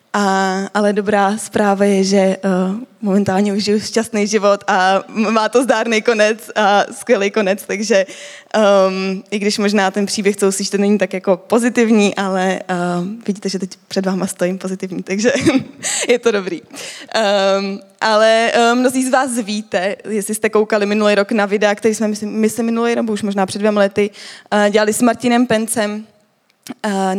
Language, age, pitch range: Czech, 20-39, 195-215 Hz